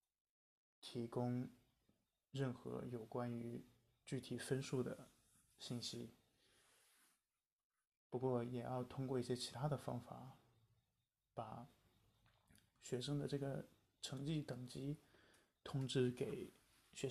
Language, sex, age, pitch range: Chinese, male, 20-39, 120-130 Hz